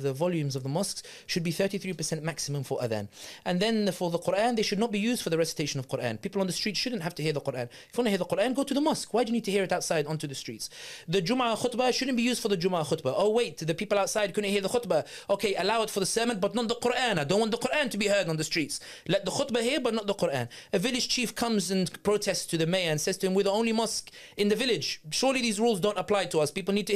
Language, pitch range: English, 170-230 Hz